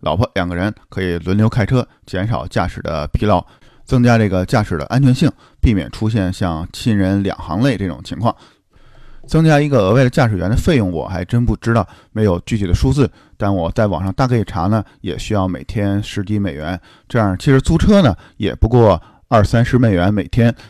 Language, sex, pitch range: Chinese, male, 90-110 Hz